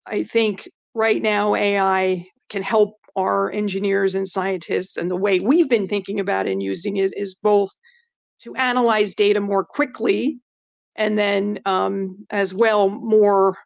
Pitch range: 195-235 Hz